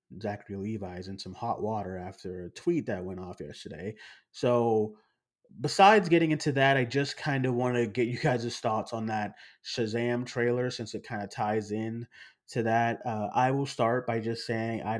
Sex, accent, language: male, American, English